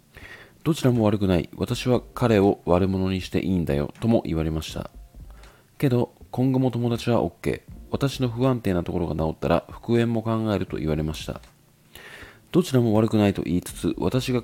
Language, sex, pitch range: Japanese, male, 85-115 Hz